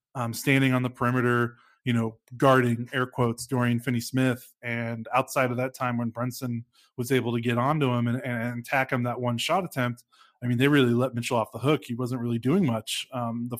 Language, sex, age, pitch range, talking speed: English, male, 20-39, 120-135 Hz, 220 wpm